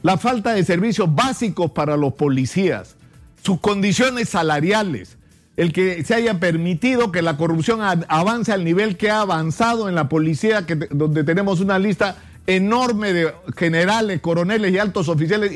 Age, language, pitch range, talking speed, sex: 50-69, Spanish, 165-225 Hz, 150 wpm, male